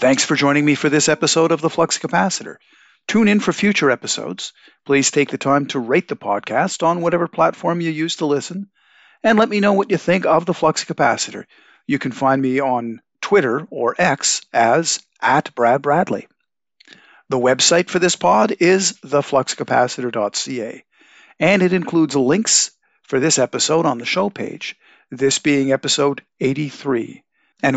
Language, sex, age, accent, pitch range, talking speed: English, male, 50-69, American, 135-180 Hz, 165 wpm